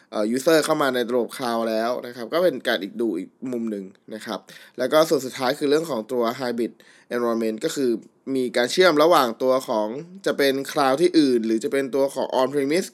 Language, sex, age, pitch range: Thai, male, 20-39, 115-145 Hz